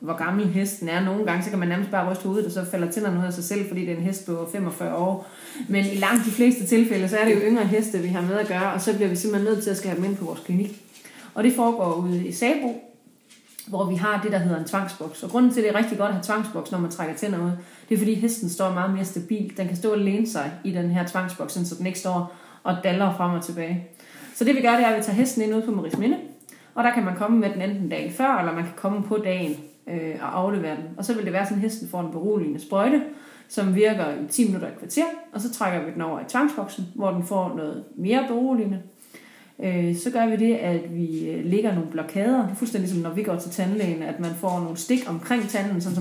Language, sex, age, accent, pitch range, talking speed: Danish, female, 30-49, native, 180-220 Hz, 270 wpm